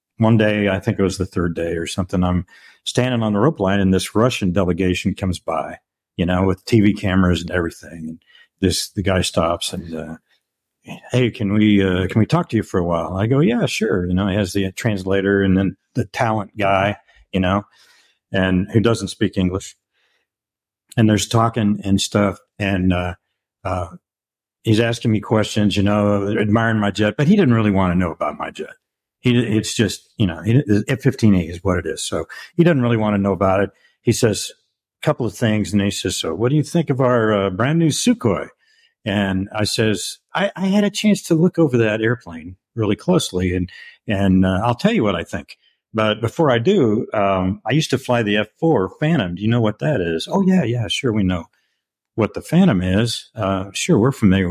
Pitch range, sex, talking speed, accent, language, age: 95-115 Hz, male, 210 wpm, American, English, 50-69